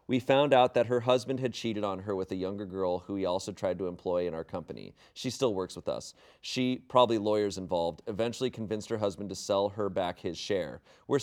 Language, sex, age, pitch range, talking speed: English, male, 30-49, 100-130 Hz, 230 wpm